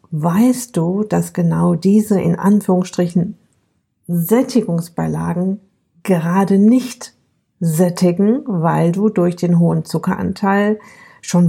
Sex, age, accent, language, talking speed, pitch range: female, 50-69, German, German, 95 wpm, 180-220 Hz